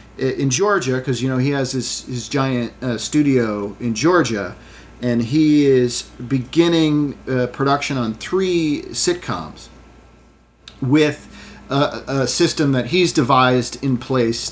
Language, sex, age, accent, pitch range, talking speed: English, male, 40-59, American, 115-145 Hz, 130 wpm